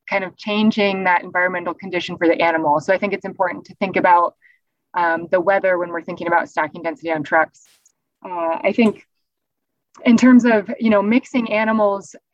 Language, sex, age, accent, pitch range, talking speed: English, female, 20-39, American, 180-220 Hz, 185 wpm